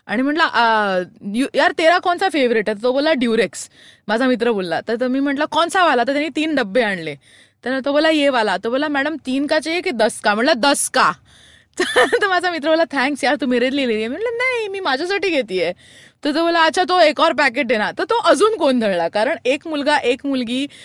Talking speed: 205 wpm